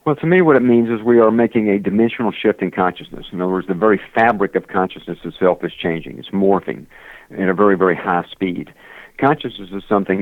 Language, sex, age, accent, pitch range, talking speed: English, male, 50-69, American, 90-105 Hz, 215 wpm